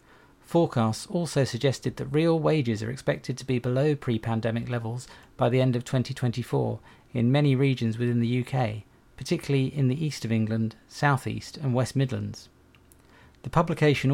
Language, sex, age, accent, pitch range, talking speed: English, male, 40-59, British, 115-135 Hz, 155 wpm